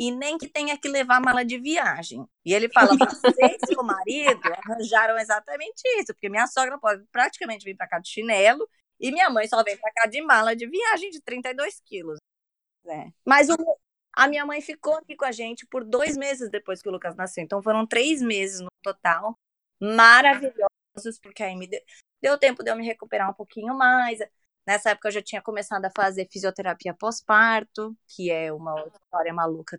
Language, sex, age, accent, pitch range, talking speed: Portuguese, female, 20-39, Brazilian, 195-255 Hz, 190 wpm